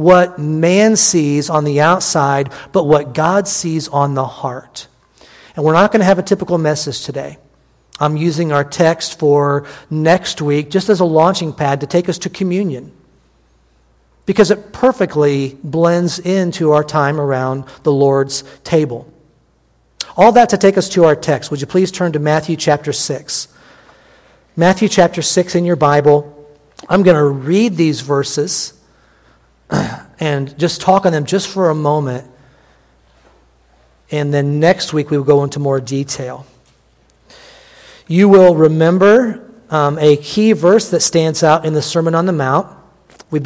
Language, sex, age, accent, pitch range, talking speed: English, male, 50-69, American, 145-180 Hz, 160 wpm